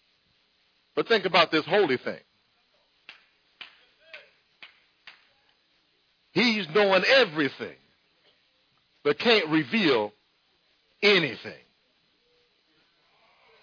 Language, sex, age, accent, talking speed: English, male, 50-69, American, 55 wpm